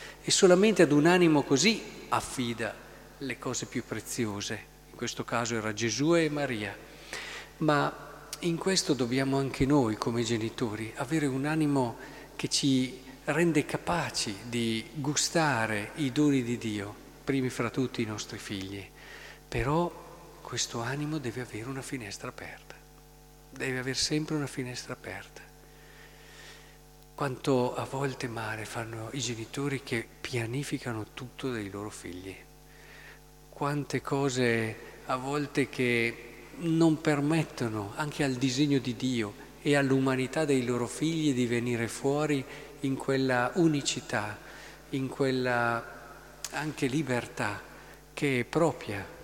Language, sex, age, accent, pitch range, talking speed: Italian, male, 50-69, native, 120-150 Hz, 125 wpm